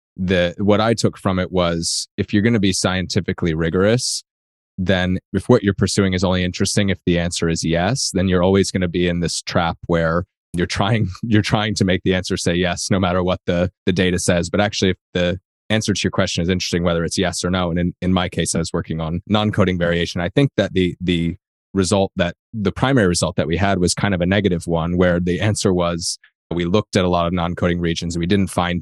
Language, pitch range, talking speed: English, 85-100 Hz, 240 wpm